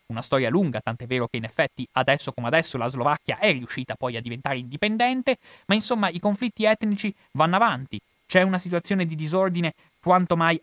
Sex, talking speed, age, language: male, 185 wpm, 30-49, Italian